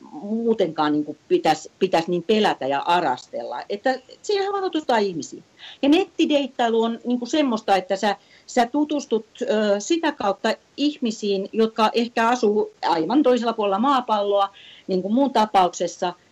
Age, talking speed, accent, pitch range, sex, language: 40-59, 130 wpm, native, 175-250 Hz, female, Finnish